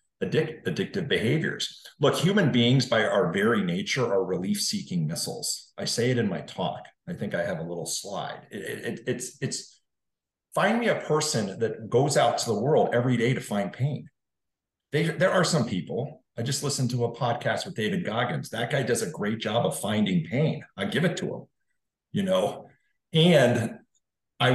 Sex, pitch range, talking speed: male, 120-180 Hz, 185 wpm